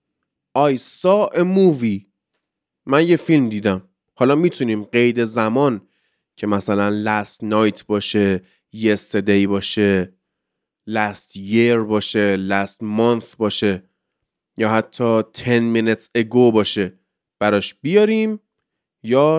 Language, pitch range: Persian, 105-155 Hz